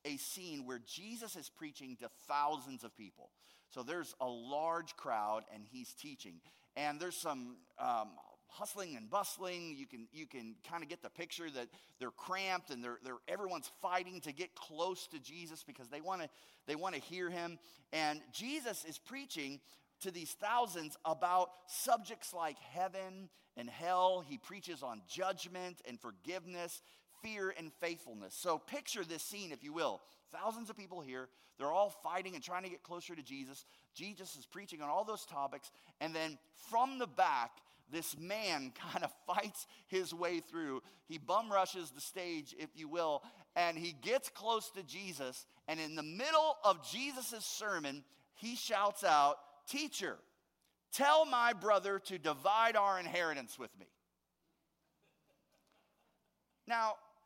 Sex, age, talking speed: male, 30-49, 160 wpm